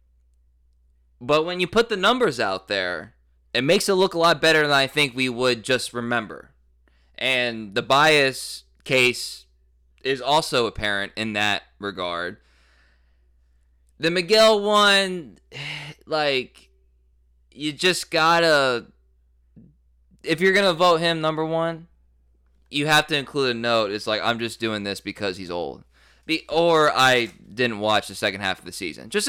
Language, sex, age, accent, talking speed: English, male, 20-39, American, 150 wpm